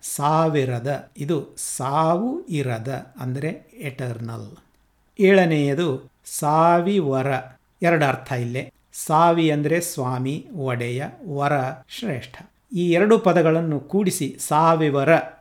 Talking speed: 90 wpm